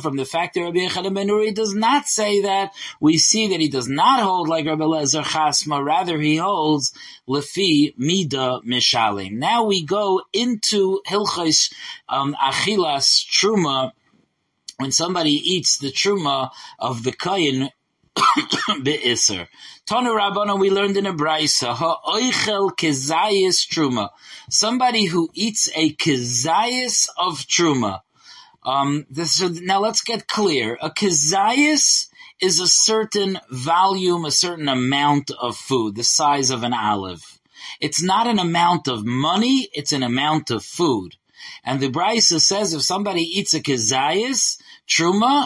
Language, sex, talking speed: English, male, 135 wpm